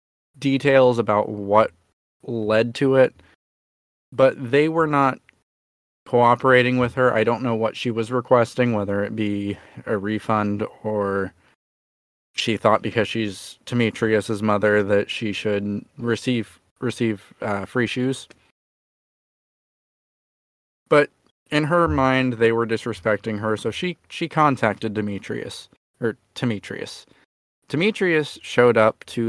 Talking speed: 120 wpm